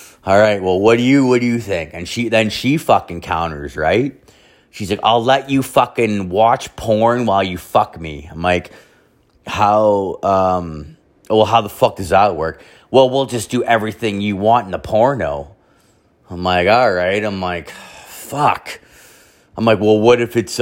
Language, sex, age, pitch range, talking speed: English, male, 30-49, 90-120 Hz, 185 wpm